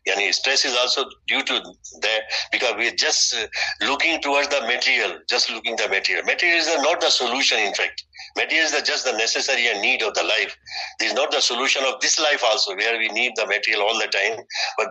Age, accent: 60-79, Indian